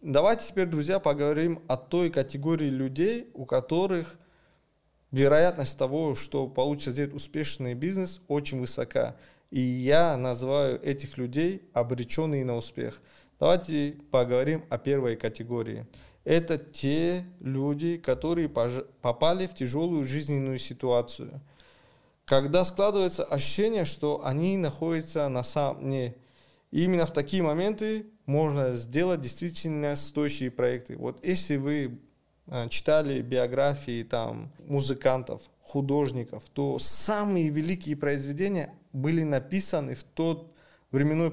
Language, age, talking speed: Russian, 20-39, 110 wpm